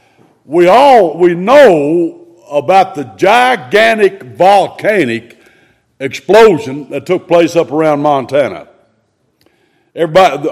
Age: 60-79